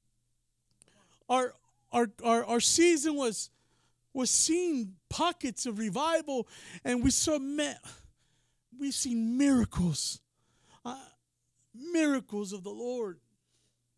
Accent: American